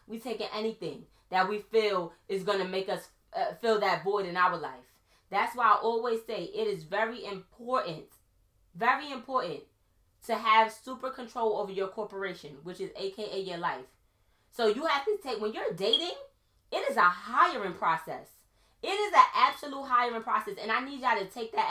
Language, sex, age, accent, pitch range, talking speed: English, female, 20-39, American, 195-250 Hz, 185 wpm